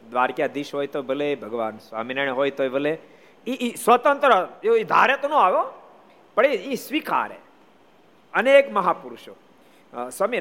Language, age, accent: Gujarati, 50-69, native